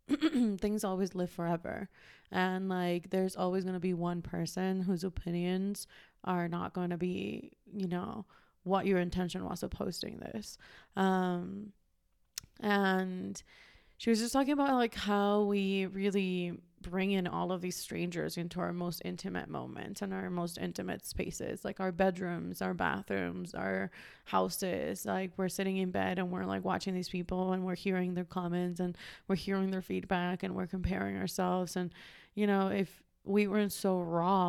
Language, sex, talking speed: English, female, 165 wpm